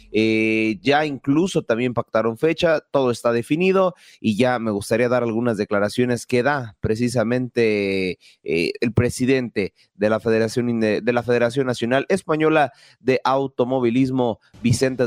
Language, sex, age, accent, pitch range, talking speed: Spanish, male, 30-49, Mexican, 110-145 Hz, 130 wpm